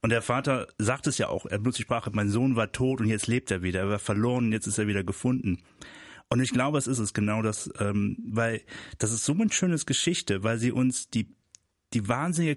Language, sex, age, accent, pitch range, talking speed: German, male, 30-49, German, 110-140 Hz, 245 wpm